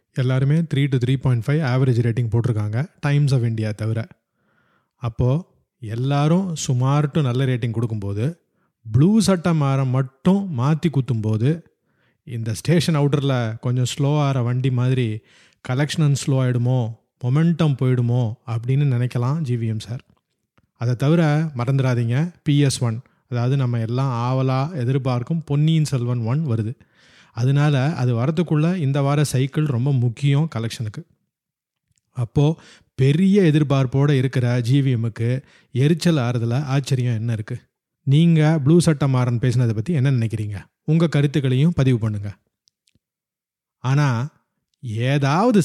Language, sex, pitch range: Tamil, male, 120-150 Hz